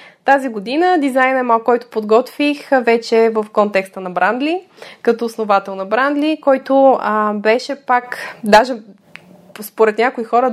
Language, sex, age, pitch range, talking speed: Bulgarian, female, 20-39, 210-270 Hz, 130 wpm